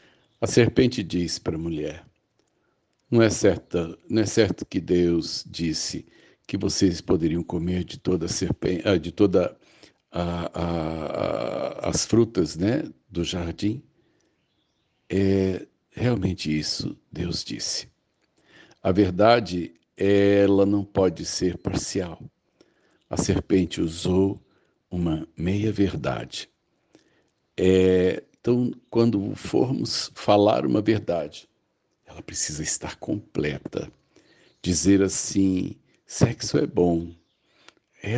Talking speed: 100 wpm